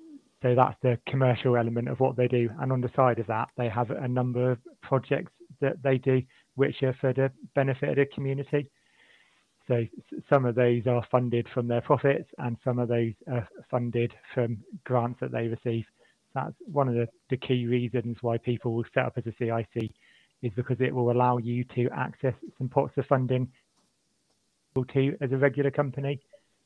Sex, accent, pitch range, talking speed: male, British, 120-135 Hz, 185 wpm